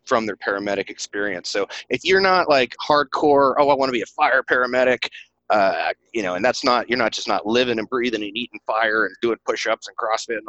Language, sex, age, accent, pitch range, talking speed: English, male, 30-49, American, 105-135 Hz, 235 wpm